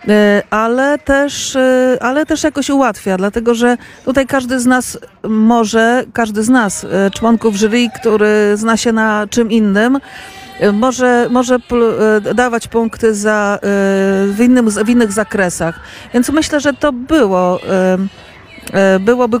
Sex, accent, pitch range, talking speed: female, native, 205-245 Hz, 125 wpm